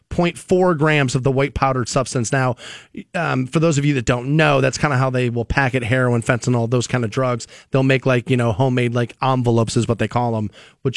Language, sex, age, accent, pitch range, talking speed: English, male, 30-49, American, 125-145 Hz, 240 wpm